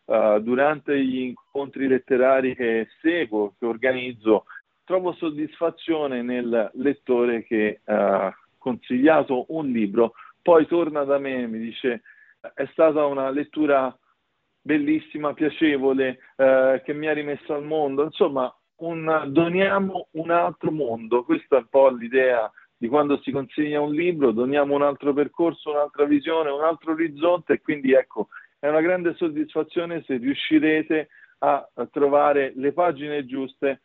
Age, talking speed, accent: 50-69, 135 wpm, native